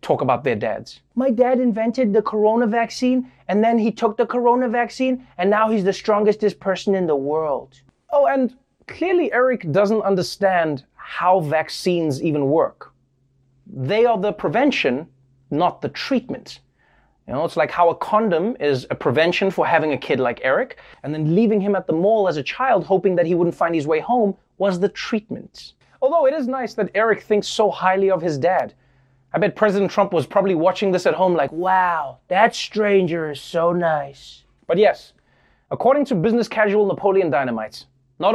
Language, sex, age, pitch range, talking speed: English, male, 30-49, 170-235 Hz, 185 wpm